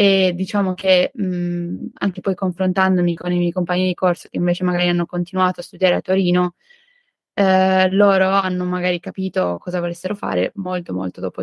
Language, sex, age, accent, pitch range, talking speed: Italian, female, 20-39, native, 175-195 Hz, 170 wpm